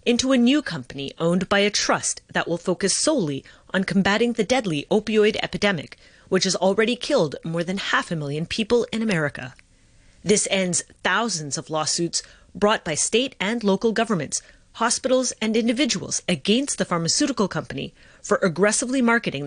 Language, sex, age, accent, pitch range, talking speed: English, female, 30-49, American, 115-190 Hz, 155 wpm